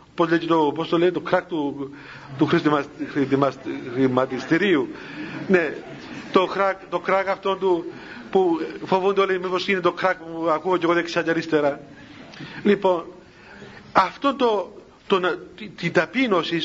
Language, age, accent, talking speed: Greek, 50-69, native, 125 wpm